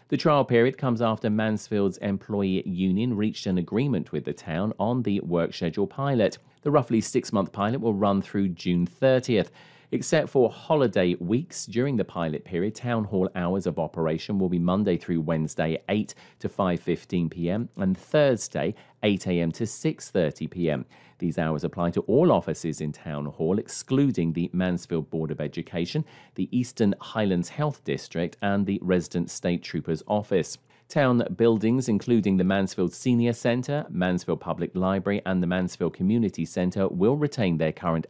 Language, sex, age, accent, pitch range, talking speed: English, male, 40-59, British, 90-120 Hz, 155 wpm